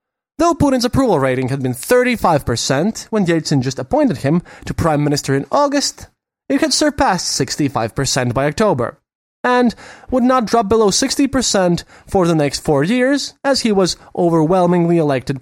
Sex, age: male, 20-39